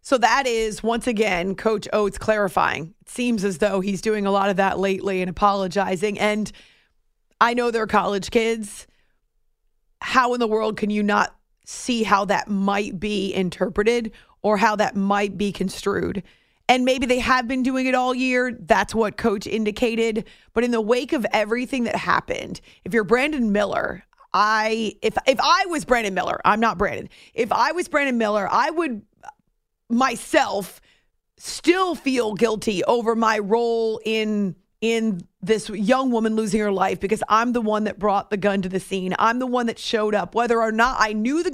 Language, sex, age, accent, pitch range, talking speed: English, female, 30-49, American, 205-245 Hz, 185 wpm